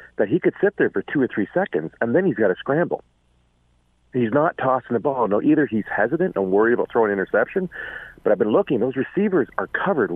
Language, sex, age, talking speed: English, male, 40-59, 225 wpm